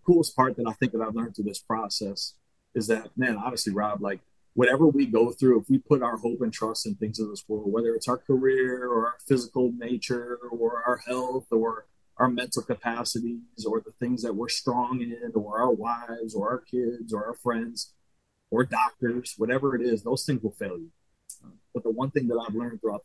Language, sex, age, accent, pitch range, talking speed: English, male, 30-49, American, 110-130 Hz, 215 wpm